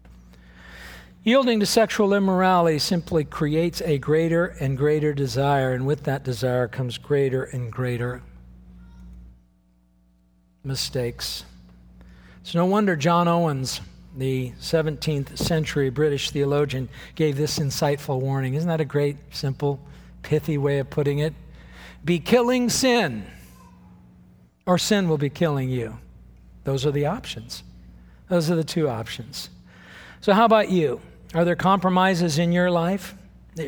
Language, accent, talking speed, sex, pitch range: English, American, 130 wpm, male, 125-185 Hz